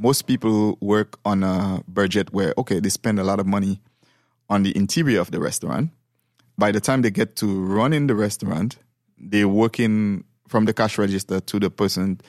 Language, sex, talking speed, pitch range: English, male, 185 wpm, 100-120 Hz